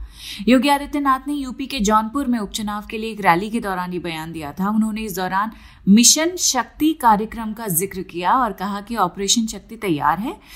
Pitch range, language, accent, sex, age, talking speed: 195-250 Hz, Hindi, native, female, 30-49, 195 wpm